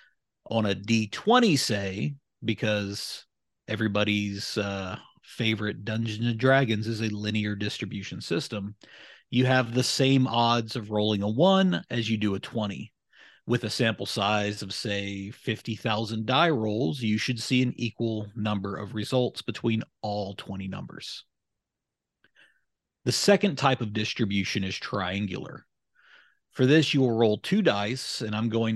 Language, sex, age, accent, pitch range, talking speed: English, male, 40-59, American, 105-125 Hz, 145 wpm